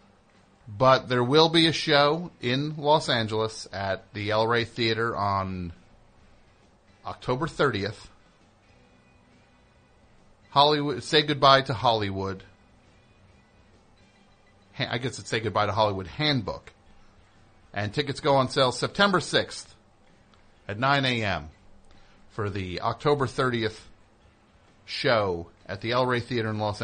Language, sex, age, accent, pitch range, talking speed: English, male, 40-59, American, 95-115 Hz, 115 wpm